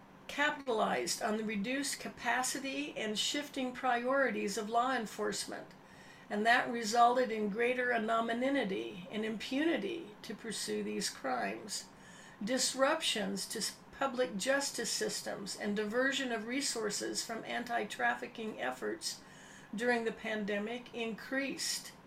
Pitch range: 215-265 Hz